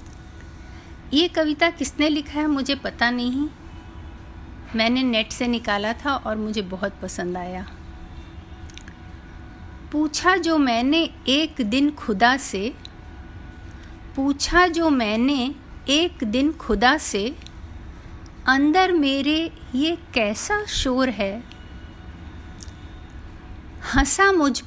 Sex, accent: female, native